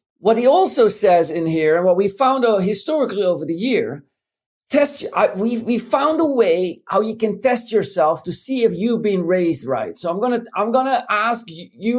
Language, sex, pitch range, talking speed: English, male, 195-255 Hz, 195 wpm